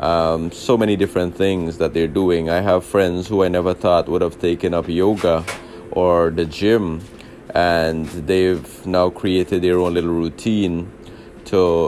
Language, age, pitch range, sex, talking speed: English, 20-39, 85-95 Hz, male, 160 wpm